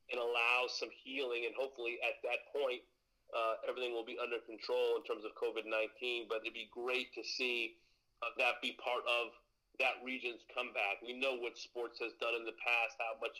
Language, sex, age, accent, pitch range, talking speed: English, male, 40-59, American, 120-145 Hz, 195 wpm